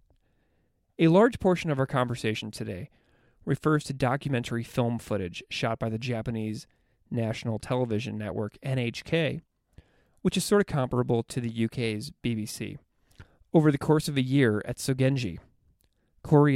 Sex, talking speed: male, 140 wpm